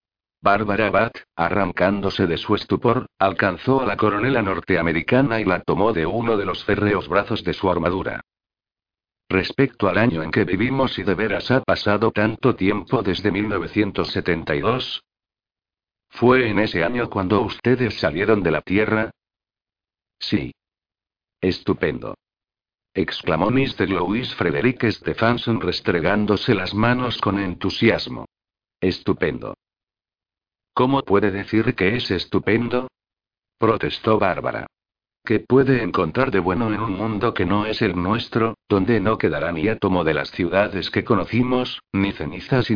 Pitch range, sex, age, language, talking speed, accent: 95-115 Hz, male, 60-79, Spanish, 135 wpm, Spanish